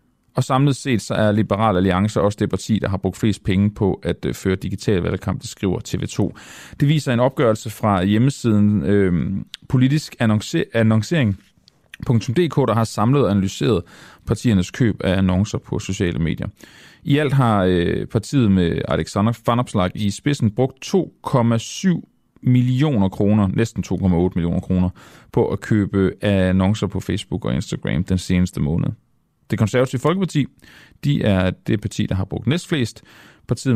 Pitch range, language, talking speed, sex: 95-125 Hz, Danish, 150 wpm, male